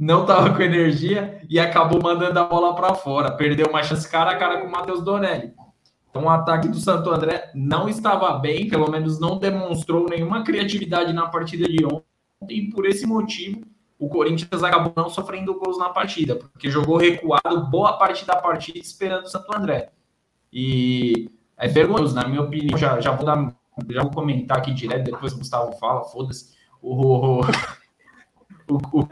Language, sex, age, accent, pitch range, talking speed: Portuguese, male, 20-39, Brazilian, 145-185 Hz, 180 wpm